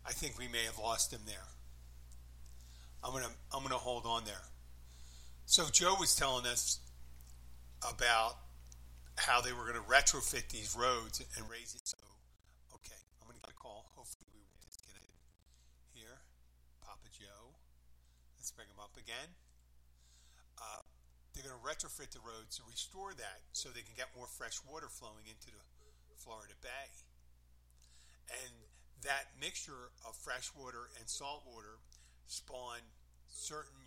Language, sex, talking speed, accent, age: English, male, 145 wpm, American, 50-69